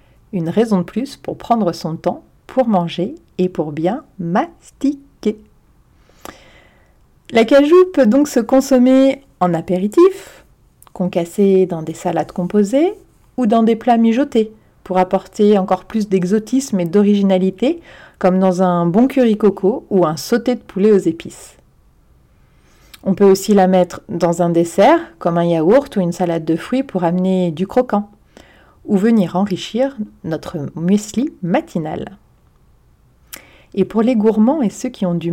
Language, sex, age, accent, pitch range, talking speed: French, female, 40-59, French, 175-235 Hz, 150 wpm